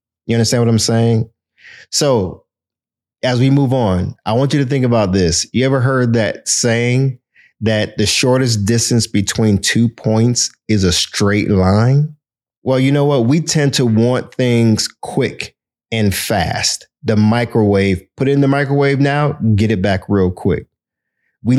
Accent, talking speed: American, 165 wpm